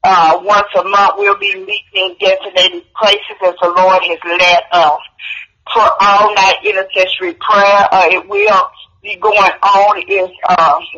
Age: 50-69